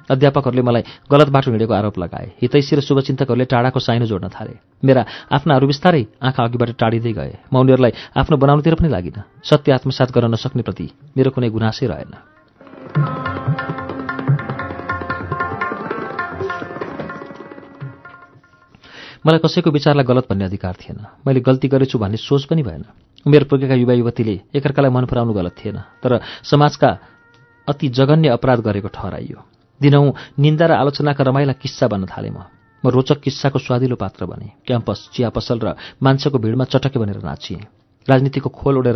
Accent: Indian